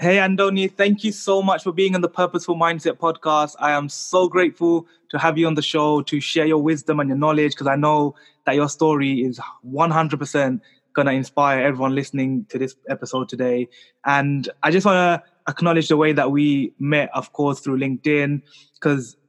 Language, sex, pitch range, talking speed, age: English, male, 135-155 Hz, 195 wpm, 20-39